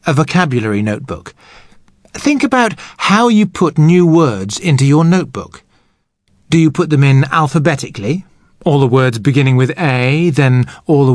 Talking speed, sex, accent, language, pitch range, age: 150 wpm, male, British, English, 130-180 Hz, 40-59